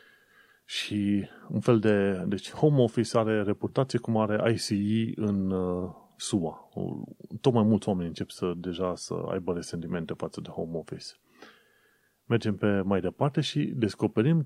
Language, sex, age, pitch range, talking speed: Romanian, male, 30-49, 95-120 Hz, 150 wpm